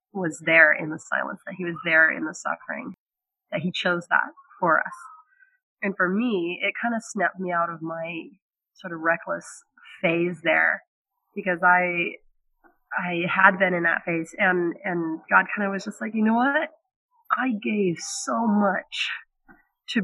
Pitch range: 180-225 Hz